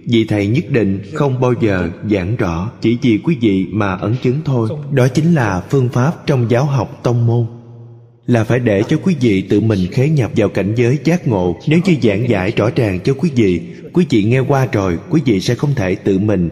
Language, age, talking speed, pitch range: Vietnamese, 20-39, 230 wpm, 100-135 Hz